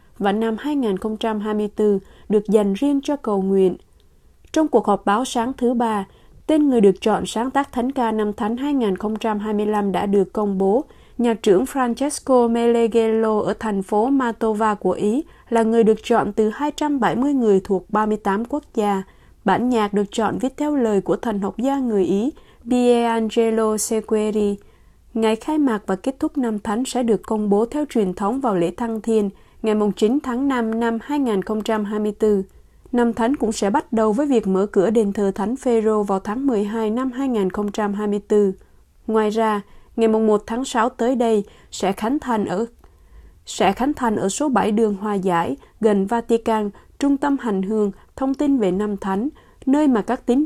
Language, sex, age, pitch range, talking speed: Vietnamese, female, 20-39, 205-240 Hz, 175 wpm